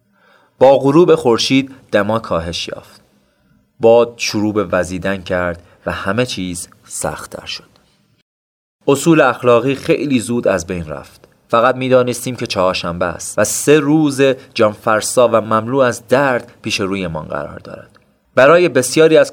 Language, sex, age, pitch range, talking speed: Persian, male, 30-49, 100-130 Hz, 140 wpm